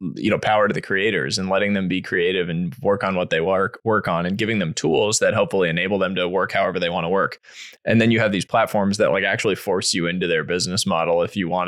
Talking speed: 265 wpm